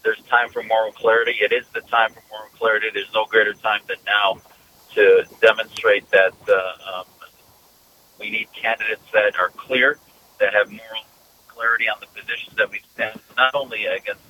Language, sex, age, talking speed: English, male, 40-59, 170 wpm